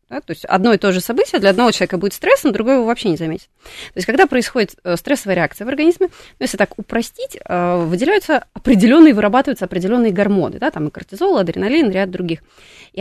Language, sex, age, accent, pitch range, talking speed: Russian, female, 20-39, native, 195-310 Hz, 215 wpm